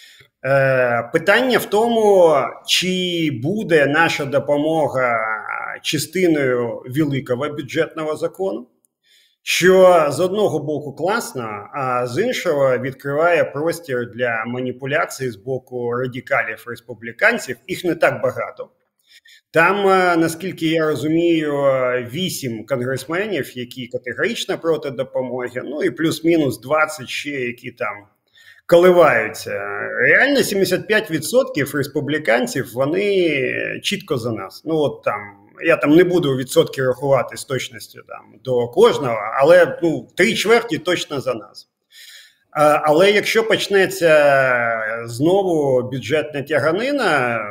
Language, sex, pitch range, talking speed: Ukrainian, male, 125-175 Hz, 105 wpm